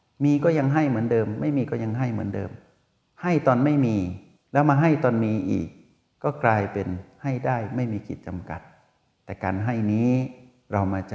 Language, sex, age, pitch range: Thai, male, 60-79, 95-120 Hz